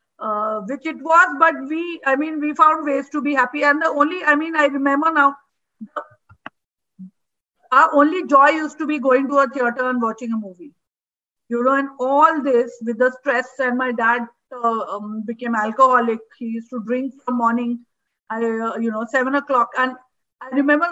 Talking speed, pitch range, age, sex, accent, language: 185 wpm, 245-295 Hz, 50-69, female, Indian, English